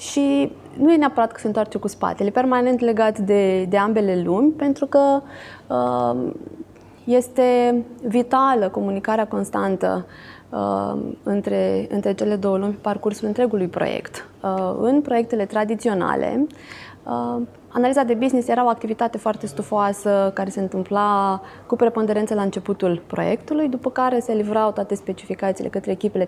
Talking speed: 135 wpm